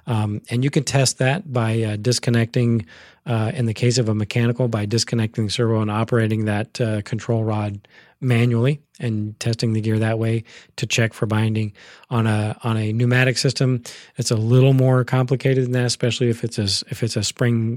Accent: American